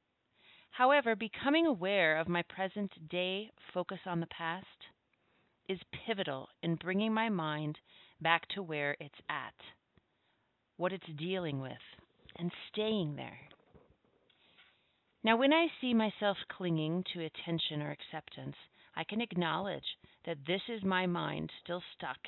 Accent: American